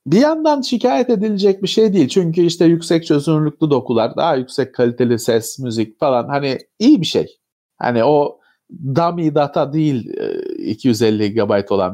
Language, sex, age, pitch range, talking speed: Turkish, male, 40-59, 140-210 Hz, 150 wpm